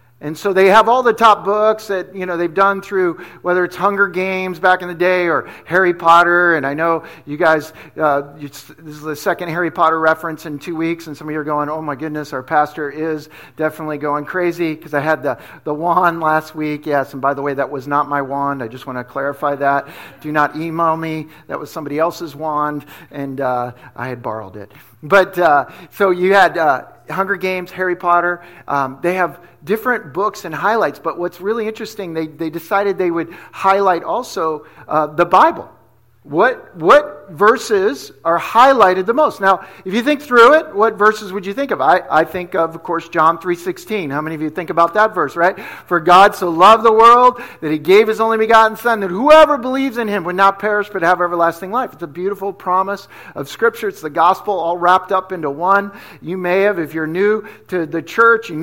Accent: American